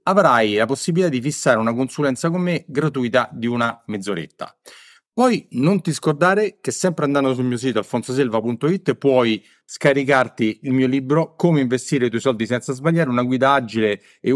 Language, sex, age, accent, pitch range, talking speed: Italian, male, 40-59, native, 115-150 Hz, 165 wpm